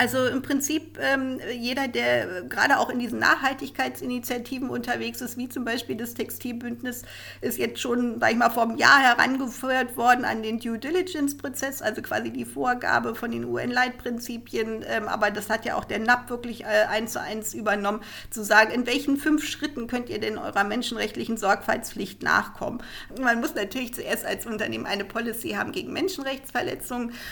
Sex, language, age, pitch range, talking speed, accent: female, German, 50-69, 215-265 Hz, 170 wpm, German